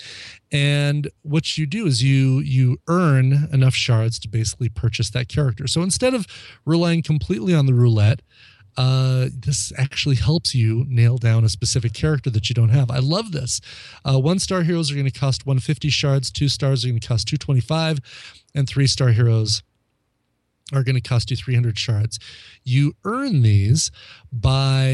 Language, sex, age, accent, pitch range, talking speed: English, male, 30-49, American, 115-140 Hz, 170 wpm